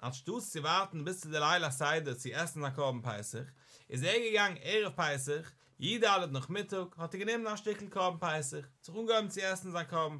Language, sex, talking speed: English, male, 225 wpm